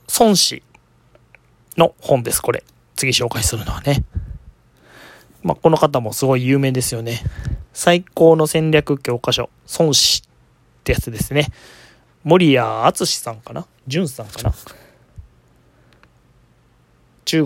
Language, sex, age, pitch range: Japanese, male, 20-39, 120-145 Hz